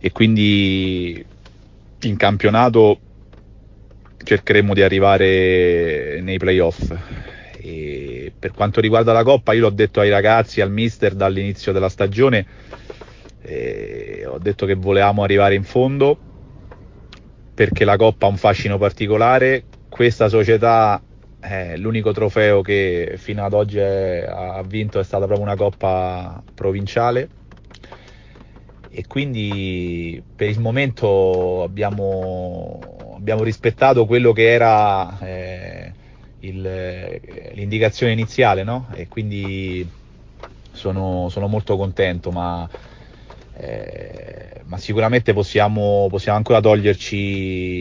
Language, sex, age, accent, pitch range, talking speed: Italian, male, 30-49, native, 95-110 Hz, 110 wpm